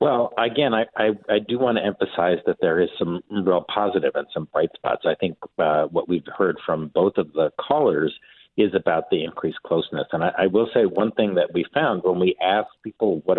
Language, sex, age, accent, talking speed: English, male, 50-69, American, 225 wpm